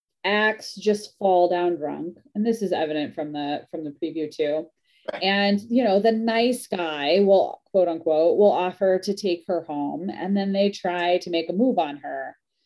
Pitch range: 170-220 Hz